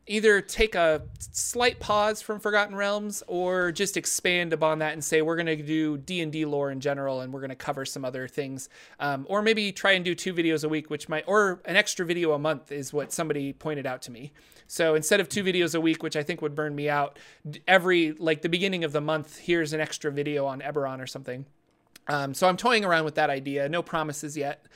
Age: 30-49